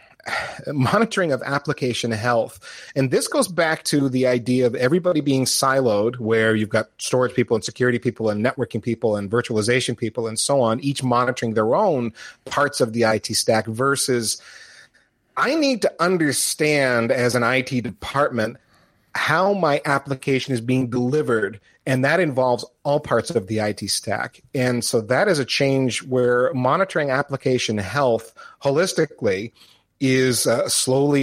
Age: 30-49